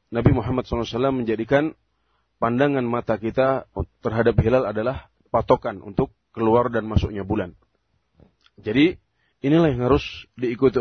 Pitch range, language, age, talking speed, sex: 110-130 Hz, Indonesian, 30-49, 115 wpm, male